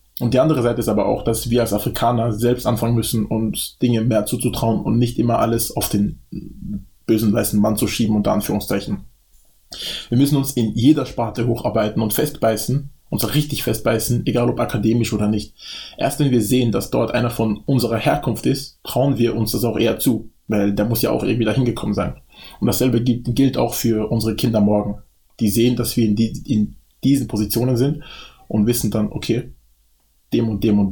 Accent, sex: German, male